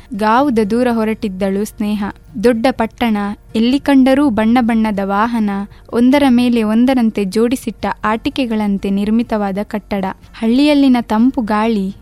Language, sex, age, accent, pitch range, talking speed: Kannada, female, 20-39, native, 210-245 Hz, 105 wpm